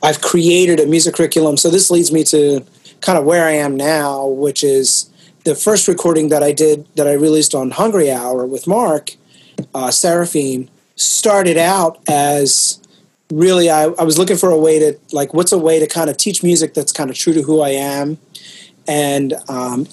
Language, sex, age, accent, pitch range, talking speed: English, male, 30-49, American, 150-175 Hz, 195 wpm